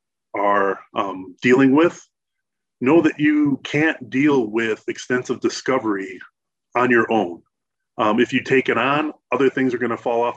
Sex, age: male, 30-49